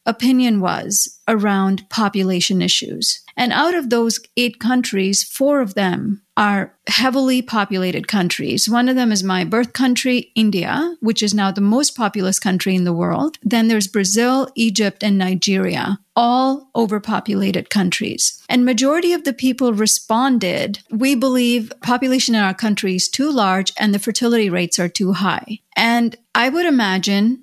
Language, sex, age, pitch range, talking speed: English, female, 40-59, 200-255 Hz, 155 wpm